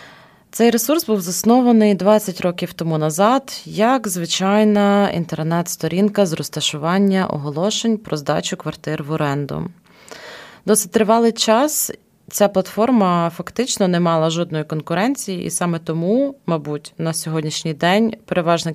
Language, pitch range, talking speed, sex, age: Ukrainian, 160-205 Hz, 120 wpm, female, 20-39